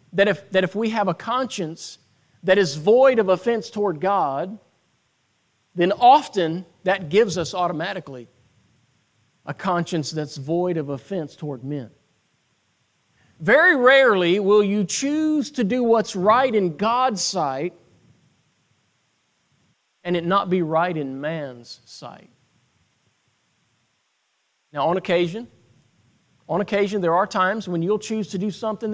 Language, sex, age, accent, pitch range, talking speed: English, male, 40-59, American, 165-215 Hz, 130 wpm